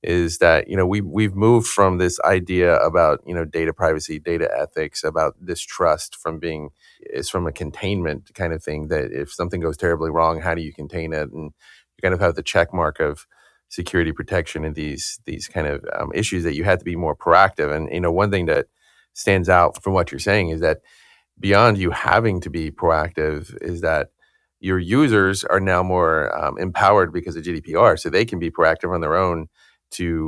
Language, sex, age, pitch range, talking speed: English, male, 30-49, 80-95 Hz, 205 wpm